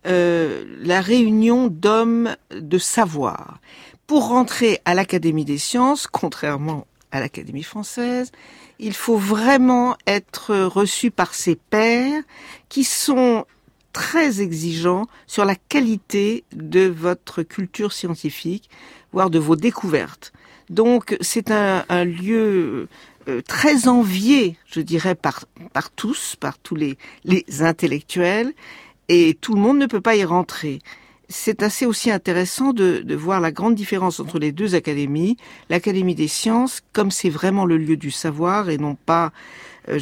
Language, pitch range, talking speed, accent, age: French, 165-230 Hz, 140 wpm, French, 60-79